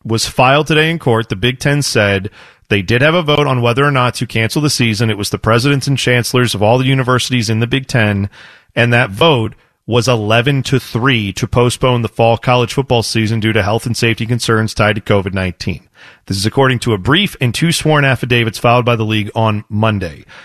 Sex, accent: male, American